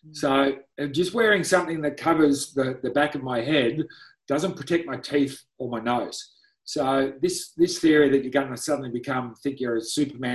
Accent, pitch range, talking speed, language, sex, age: Australian, 130-165 Hz, 190 wpm, English, male, 40-59